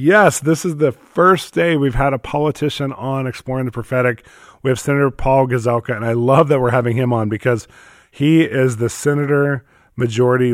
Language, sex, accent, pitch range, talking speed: English, male, American, 105-125 Hz, 180 wpm